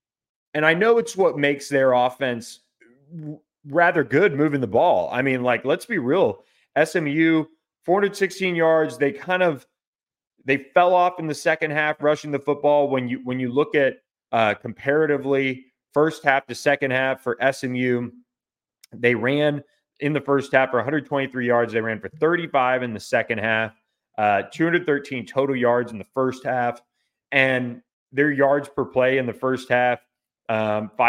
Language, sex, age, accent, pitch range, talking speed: English, male, 30-49, American, 120-145 Hz, 165 wpm